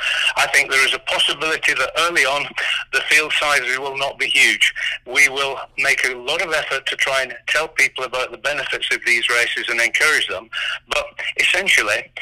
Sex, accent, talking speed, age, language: male, British, 190 wpm, 60-79, English